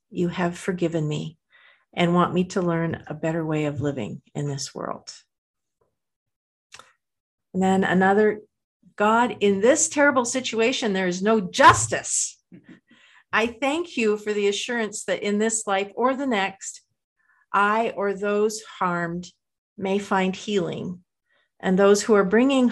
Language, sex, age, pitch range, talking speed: English, female, 50-69, 175-215 Hz, 145 wpm